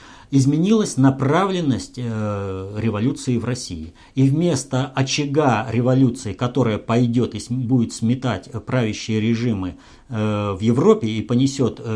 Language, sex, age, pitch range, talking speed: Russian, male, 50-69, 105-135 Hz, 100 wpm